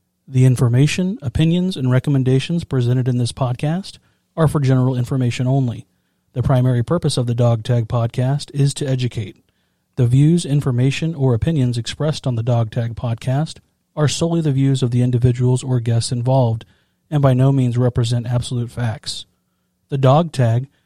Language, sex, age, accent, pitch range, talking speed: English, male, 40-59, American, 120-140 Hz, 160 wpm